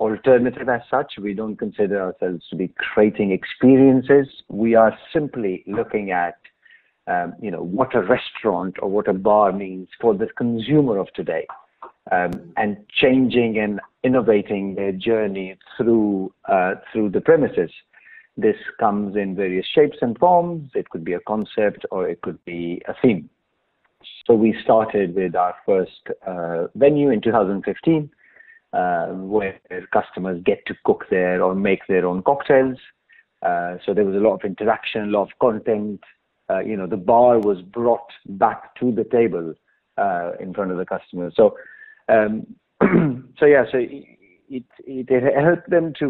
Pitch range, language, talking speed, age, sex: 100-140 Hz, English, 160 wpm, 50-69, male